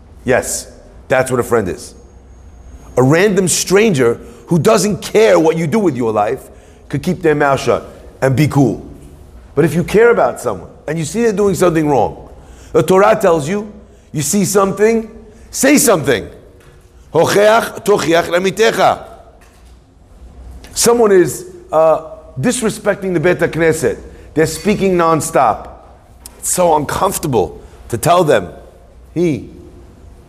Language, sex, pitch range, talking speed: English, male, 120-195 Hz, 130 wpm